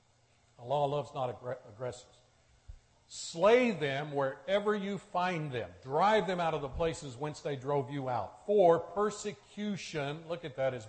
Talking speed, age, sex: 155 wpm, 50-69, male